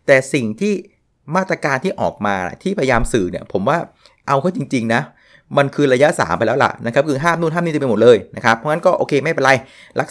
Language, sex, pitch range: Thai, male, 110-150 Hz